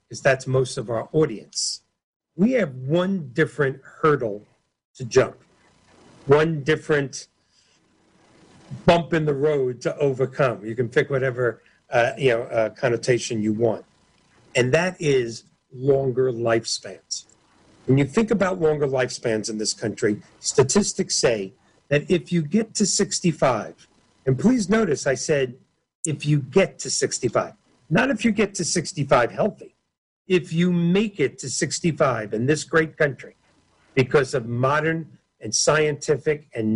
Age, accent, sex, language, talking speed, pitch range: 50-69, American, male, English, 140 wpm, 130-175 Hz